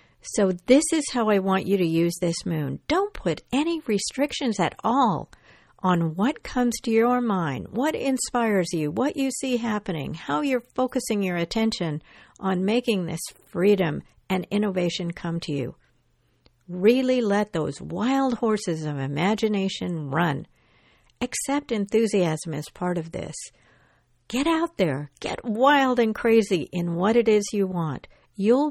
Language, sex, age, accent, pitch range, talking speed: English, female, 60-79, American, 175-245 Hz, 150 wpm